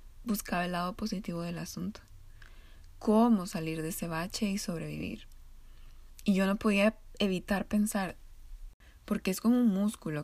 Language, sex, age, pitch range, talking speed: Spanish, female, 20-39, 165-210 Hz, 140 wpm